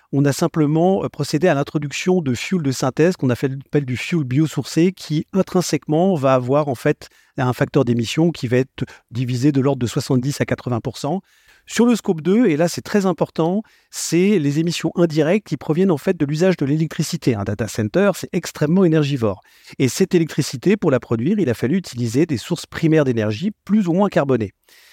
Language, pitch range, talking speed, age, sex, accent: French, 130-180 Hz, 190 wpm, 40-59, male, French